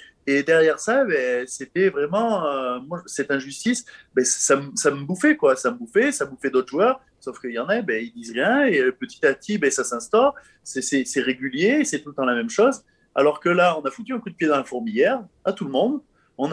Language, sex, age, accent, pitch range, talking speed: French, male, 30-49, French, 130-220 Hz, 260 wpm